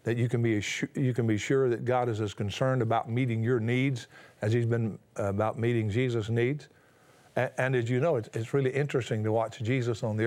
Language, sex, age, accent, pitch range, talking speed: English, male, 50-69, American, 110-150 Hz, 230 wpm